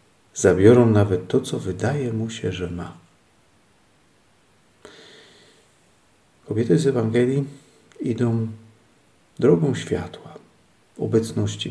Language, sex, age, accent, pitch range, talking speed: Polish, male, 50-69, native, 90-125 Hz, 80 wpm